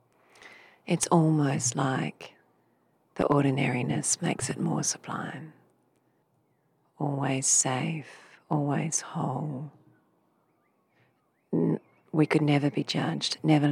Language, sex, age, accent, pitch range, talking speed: English, female, 40-59, Australian, 130-155 Hz, 85 wpm